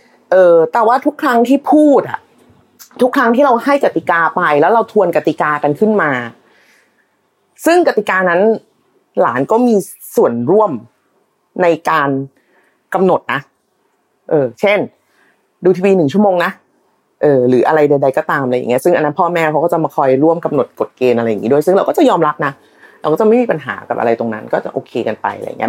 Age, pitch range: 30-49, 145-195 Hz